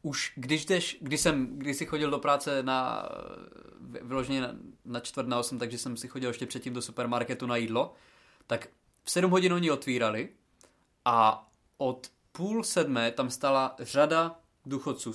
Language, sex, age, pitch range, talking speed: Czech, male, 20-39, 125-160 Hz, 160 wpm